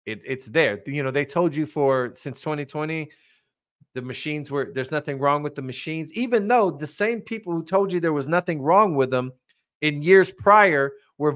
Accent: American